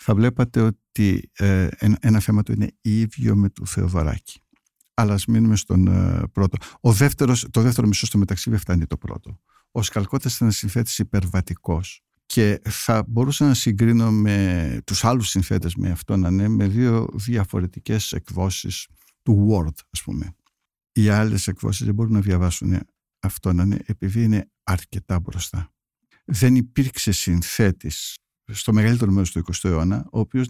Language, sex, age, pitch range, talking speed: Greek, male, 60-79, 95-115 Hz, 155 wpm